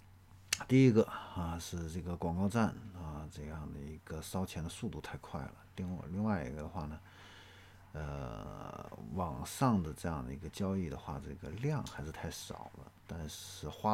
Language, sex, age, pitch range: Chinese, male, 50-69, 80-100 Hz